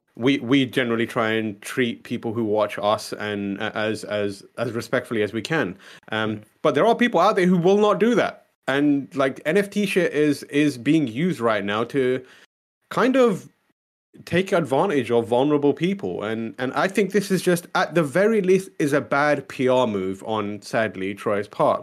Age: 30-49